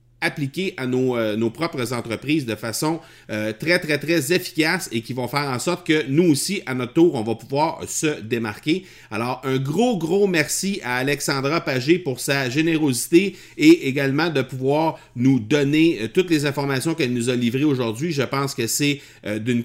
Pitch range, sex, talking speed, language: 125-180 Hz, male, 185 wpm, French